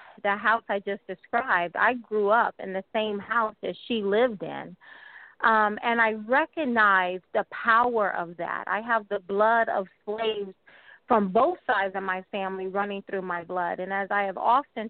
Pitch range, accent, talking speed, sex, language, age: 200-255 Hz, American, 180 wpm, female, English, 30-49